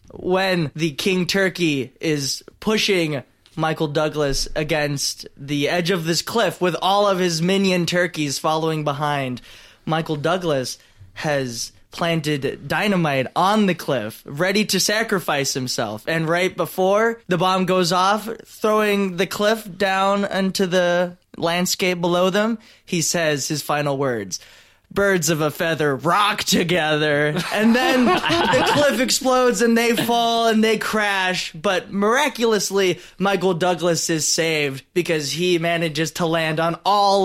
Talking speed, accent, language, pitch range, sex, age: 135 wpm, American, English, 150-195 Hz, male, 20-39